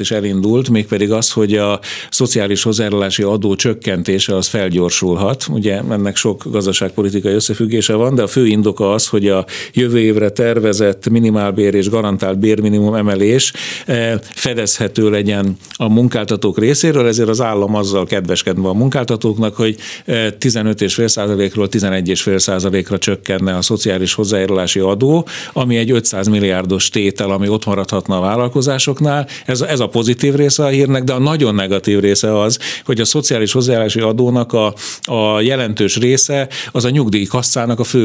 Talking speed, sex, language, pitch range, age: 140 wpm, male, Hungarian, 100-130 Hz, 50-69